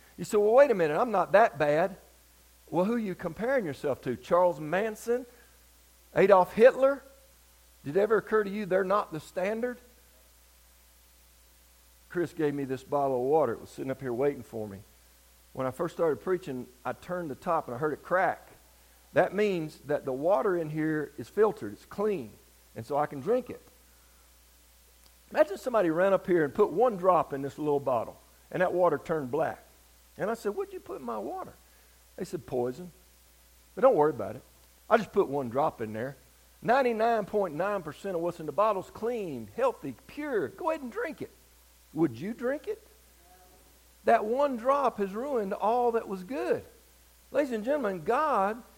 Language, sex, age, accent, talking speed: English, male, 50-69, American, 185 wpm